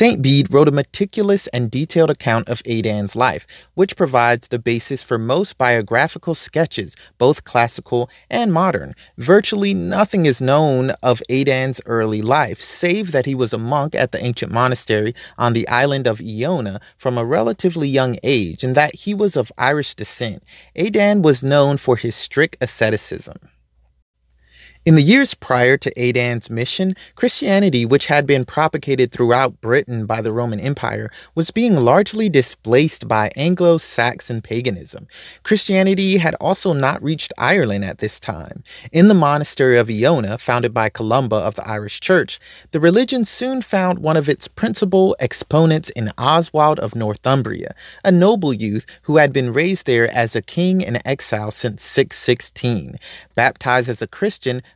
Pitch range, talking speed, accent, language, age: 120-170 Hz, 155 wpm, American, English, 30-49